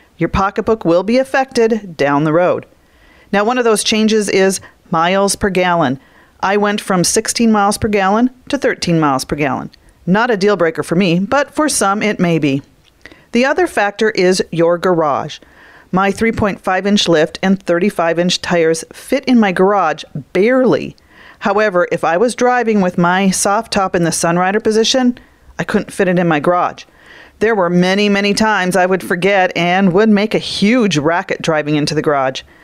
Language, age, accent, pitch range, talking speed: English, 40-59, American, 170-215 Hz, 180 wpm